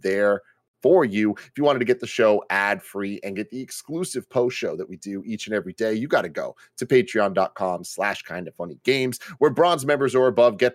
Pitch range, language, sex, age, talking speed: 110-150 Hz, English, male, 30-49, 225 wpm